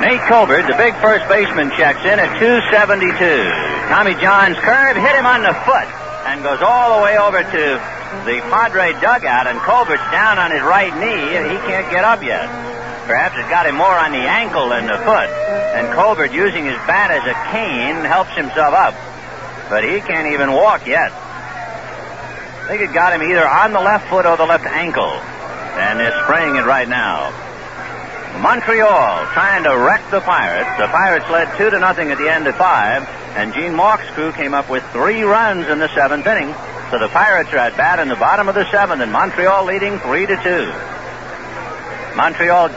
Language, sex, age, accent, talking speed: English, male, 60-79, American, 195 wpm